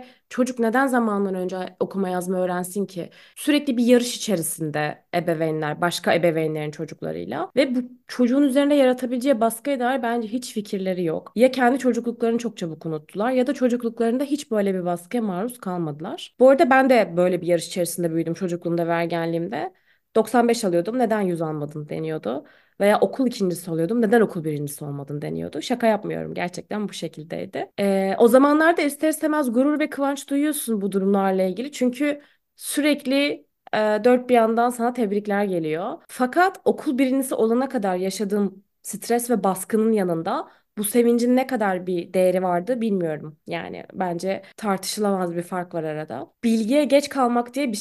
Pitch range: 175-255 Hz